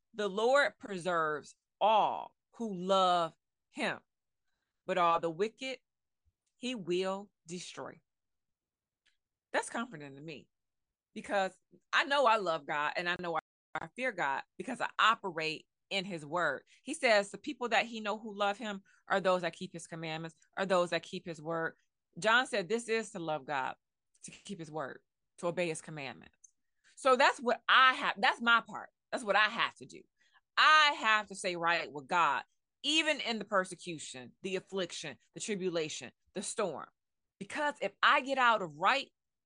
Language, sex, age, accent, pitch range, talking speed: English, female, 20-39, American, 170-245 Hz, 170 wpm